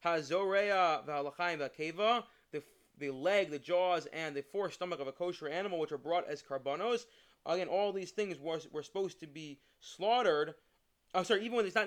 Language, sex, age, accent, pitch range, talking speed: English, male, 30-49, American, 150-205 Hz, 180 wpm